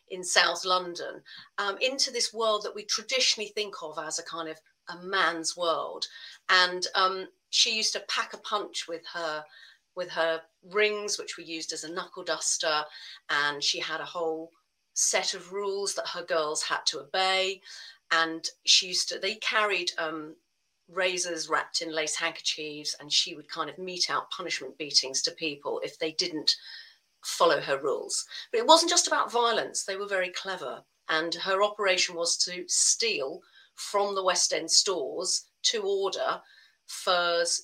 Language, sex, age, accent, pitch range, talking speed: English, female, 40-59, British, 165-230 Hz, 170 wpm